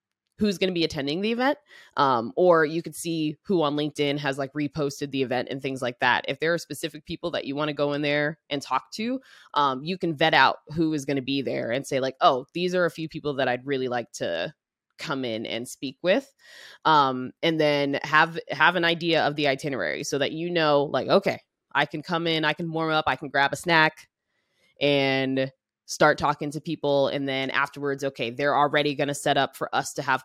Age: 20-39